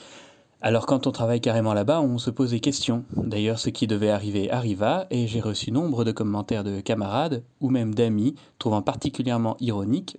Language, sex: French, male